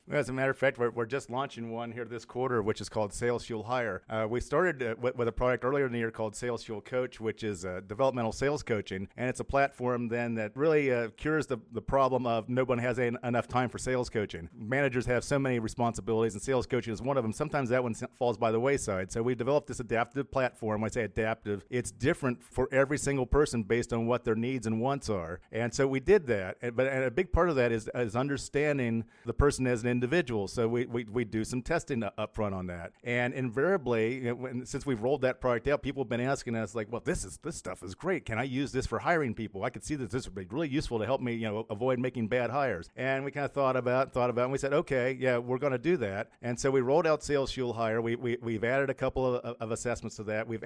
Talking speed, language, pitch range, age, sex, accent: 270 wpm, English, 115-130 Hz, 40-59, male, American